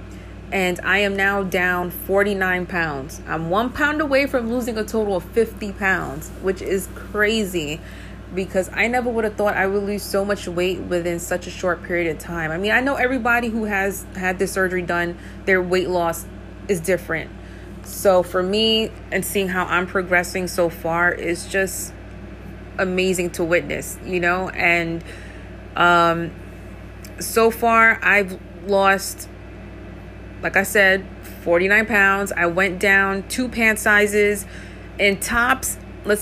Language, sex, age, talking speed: English, female, 30-49, 155 wpm